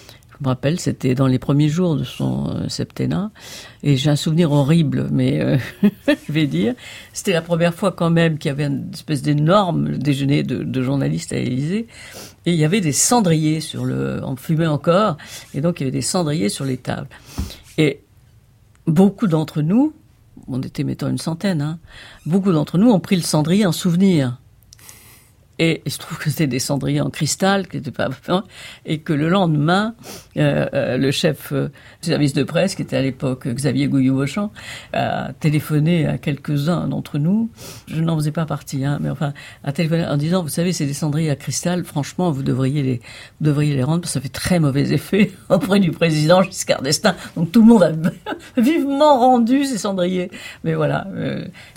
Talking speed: 195 wpm